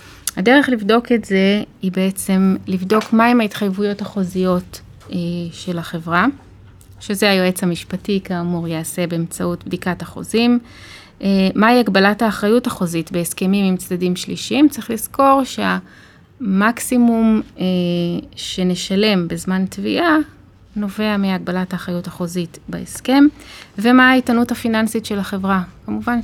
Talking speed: 110 wpm